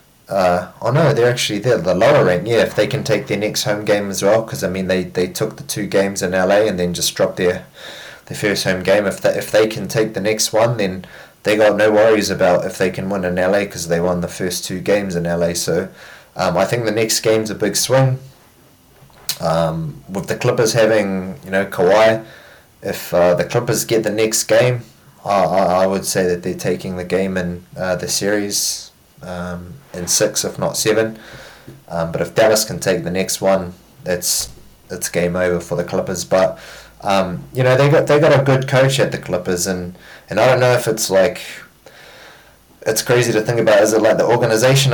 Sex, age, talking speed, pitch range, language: male, 20-39, 220 wpm, 90-115 Hz, English